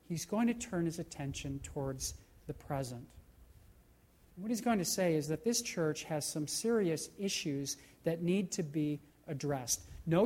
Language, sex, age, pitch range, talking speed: English, male, 40-59, 135-180 Hz, 165 wpm